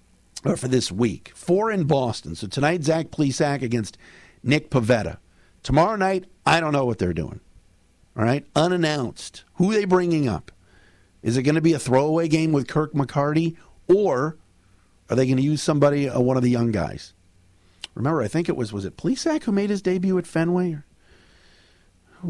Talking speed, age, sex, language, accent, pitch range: 185 wpm, 50-69, male, English, American, 100-155 Hz